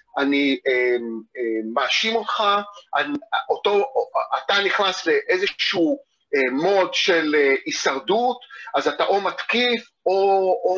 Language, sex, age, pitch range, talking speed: Hebrew, male, 40-59, 155-240 Hz, 120 wpm